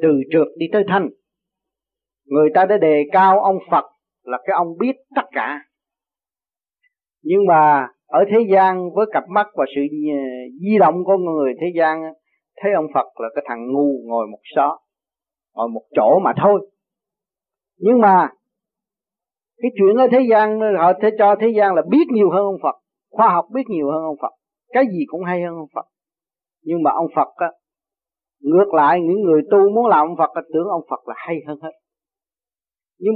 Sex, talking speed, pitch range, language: male, 185 wpm, 160-225 Hz, Vietnamese